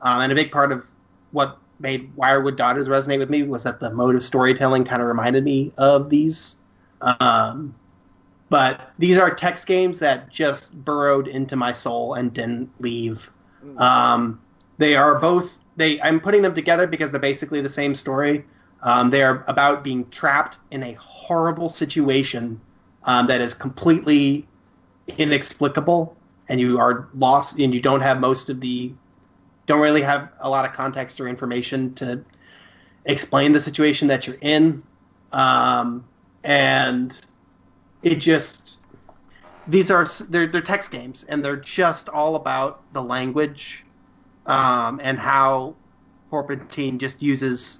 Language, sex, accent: English, male, American